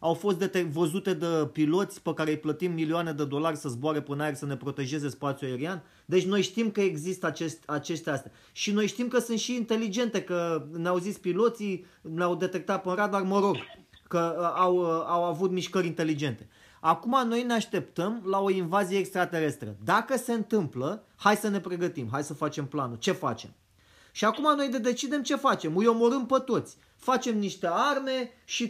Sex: male